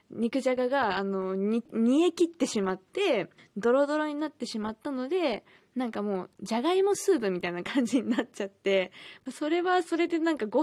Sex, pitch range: female, 205-285 Hz